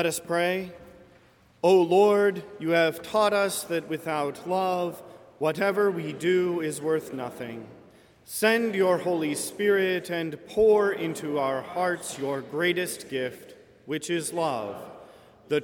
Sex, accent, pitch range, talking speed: male, American, 145-175 Hz, 130 wpm